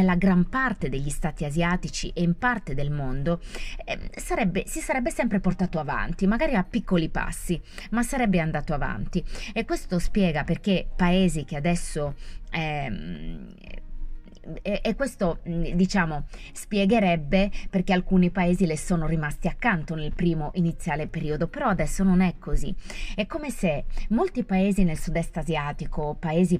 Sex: female